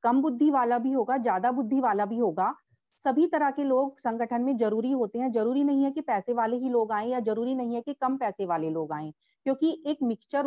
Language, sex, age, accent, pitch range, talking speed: Hindi, female, 40-59, native, 220-285 Hz, 235 wpm